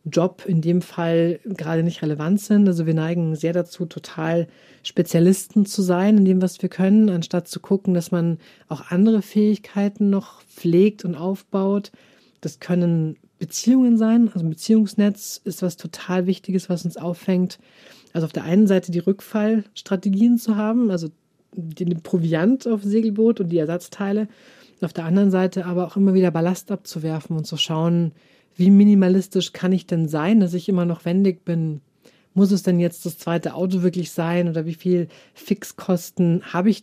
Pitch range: 165-195 Hz